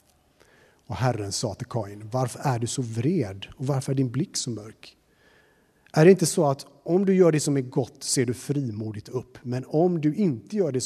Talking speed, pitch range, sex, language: 215 wpm, 115-170 Hz, male, Swedish